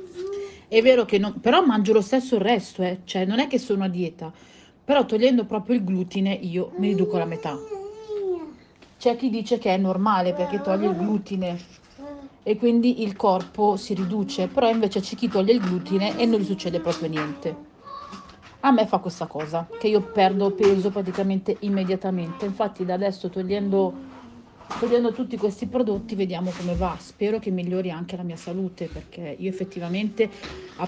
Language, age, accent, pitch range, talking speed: Italian, 40-59, native, 180-215 Hz, 175 wpm